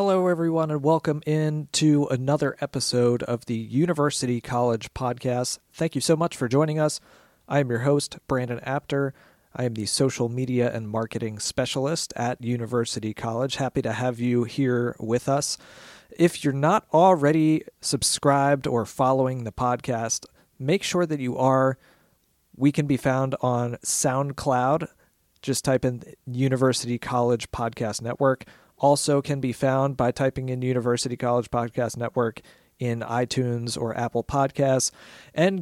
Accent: American